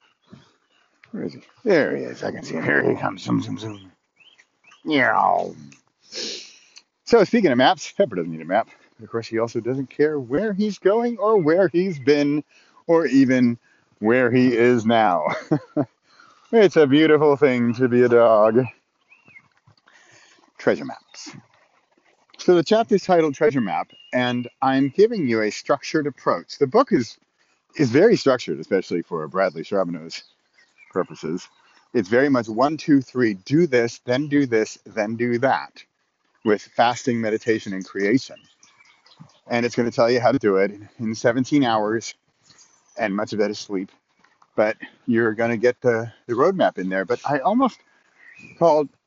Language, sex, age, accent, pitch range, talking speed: English, male, 40-59, American, 110-150 Hz, 160 wpm